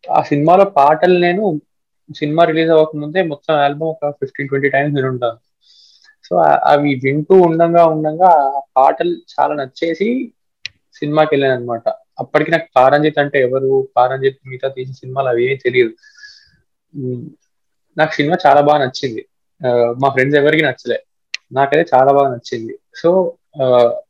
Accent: native